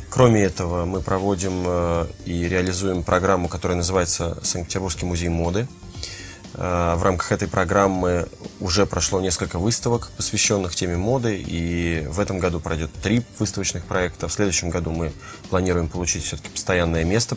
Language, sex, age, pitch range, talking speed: Russian, male, 20-39, 85-100 Hz, 140 wpm